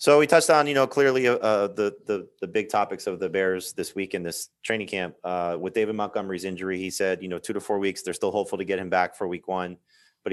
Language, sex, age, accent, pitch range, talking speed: English, male, 30-49, American, 90-120 Hz, 265 wpm